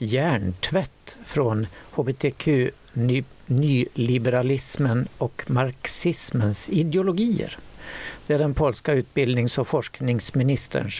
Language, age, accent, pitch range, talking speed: Swedish, 60-79, native, 120-150 Hz, 70 wpm